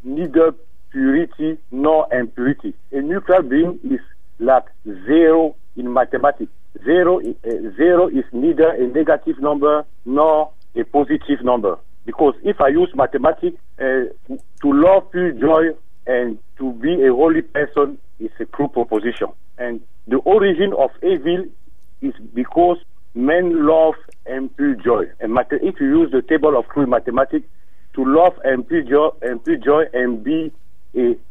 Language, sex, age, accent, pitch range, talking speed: English, male, 60-79, French, 125-190 Hz, 140 wpm